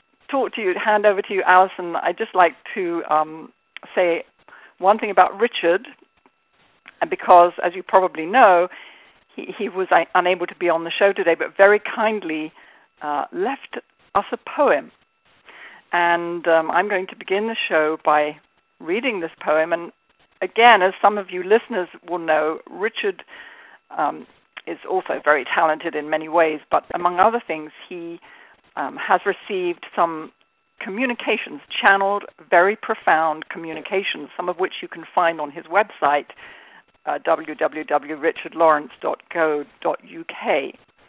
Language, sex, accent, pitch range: English, female, British, 165-210 Hz